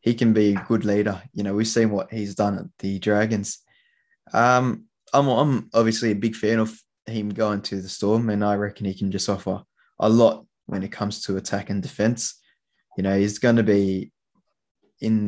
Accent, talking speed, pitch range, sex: Australian, 205 wpm, 100-115 Hz, male